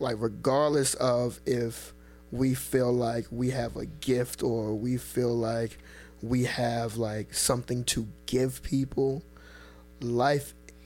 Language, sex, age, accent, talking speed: English, male, 20-39, American, 125 wpm